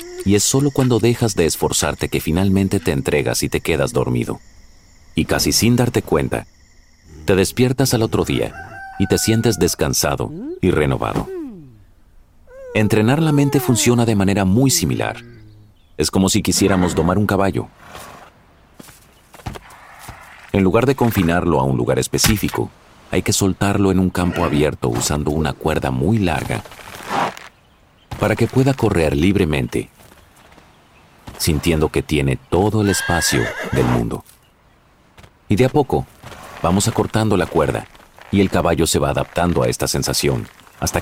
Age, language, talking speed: 40-59, Spanish, 140 wpm